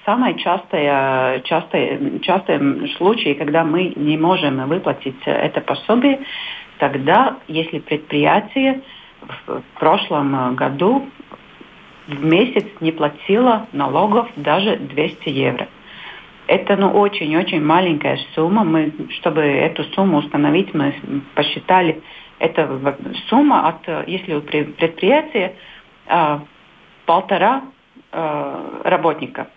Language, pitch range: Russian, 150-205 Hz